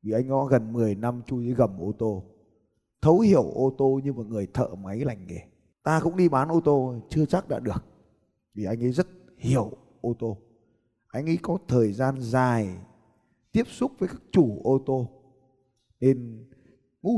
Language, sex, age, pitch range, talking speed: Vietnamese, male, 20-39, 115-160 Hz, 190 wpm